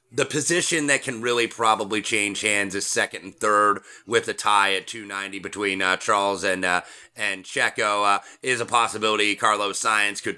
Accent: American